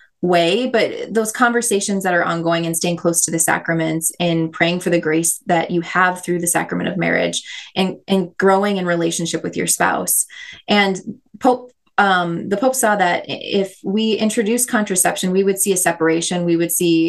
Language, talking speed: English, 185 wpm